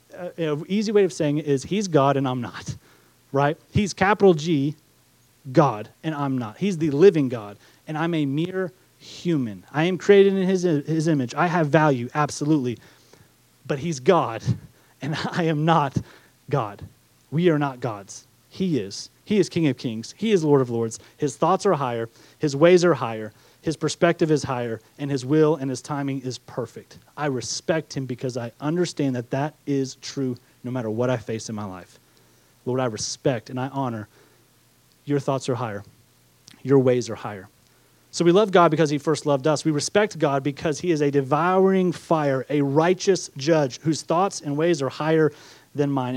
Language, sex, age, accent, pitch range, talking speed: English, male, 30-49, American, 125-160 Hz, 190 wpm